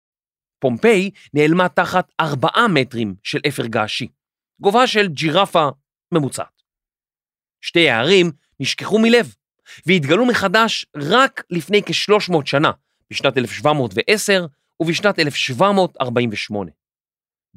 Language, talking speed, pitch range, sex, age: Hebrew, 90 wpm, 135-195 Hz, male, 30-49